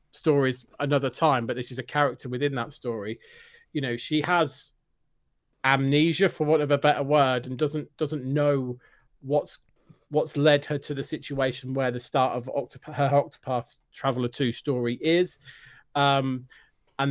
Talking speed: 155 wpm